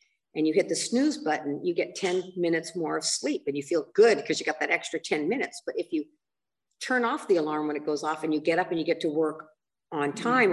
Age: 50-69